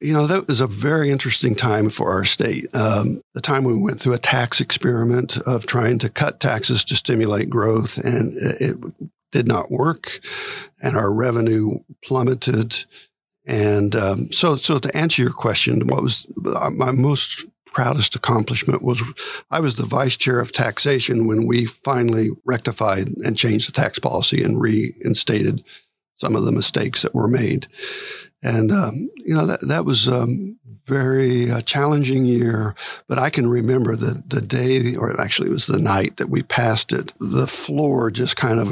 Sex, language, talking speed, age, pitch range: male, English, 175 wpm, 60-79, 115-135 Hz